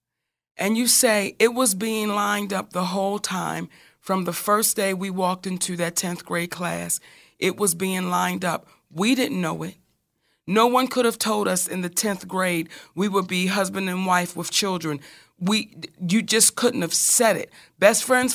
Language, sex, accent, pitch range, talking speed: English, female, American, 185-220 Hz, 190 wpm